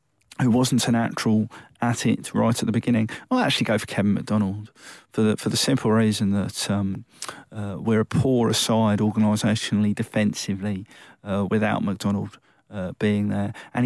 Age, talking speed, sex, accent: 40-59, 165 wpm, male, British